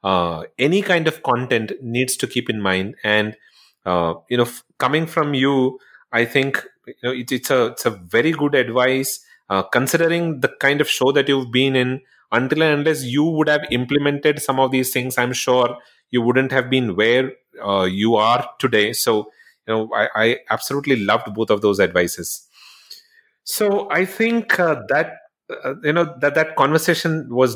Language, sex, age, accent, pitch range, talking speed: English, male, 30-49, Indian, 115-145 Hz, 185 wpm